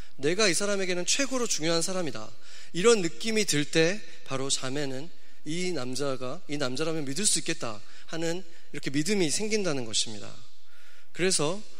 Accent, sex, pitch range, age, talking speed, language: Korean, male, 140-195 Hz, 30-49, 125 wpm, English